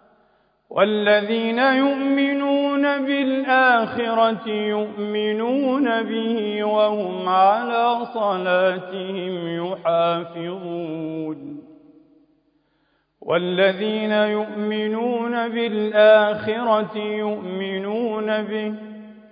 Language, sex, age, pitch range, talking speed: Arabic, male, 40-59, 215-245 Hz, 45 wpm